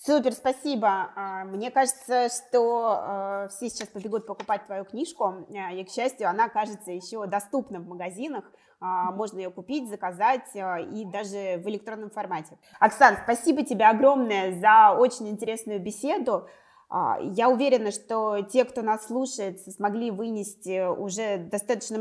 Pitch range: 195-240 Hz